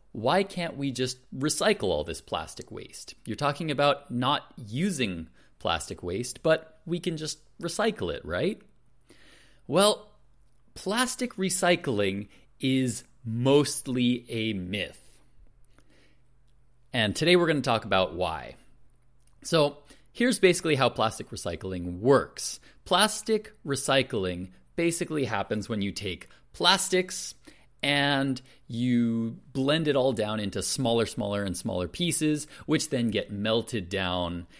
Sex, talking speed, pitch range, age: male, 120 wpm, 105-165 Hz, 30-49